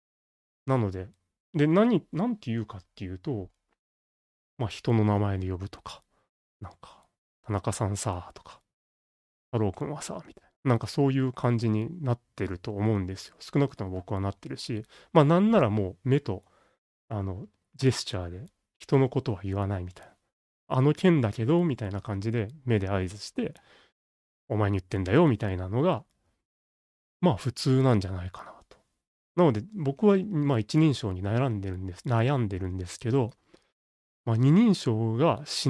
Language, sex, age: Japanese, male, 30-49